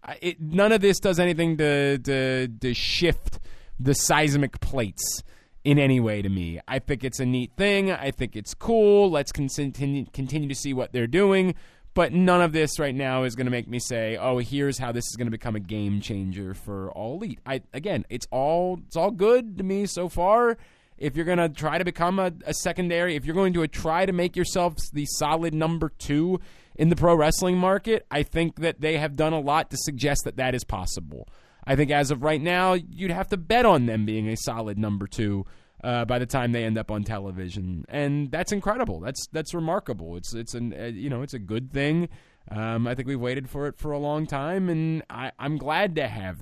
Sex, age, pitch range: male, 20-39, 120-170 Hz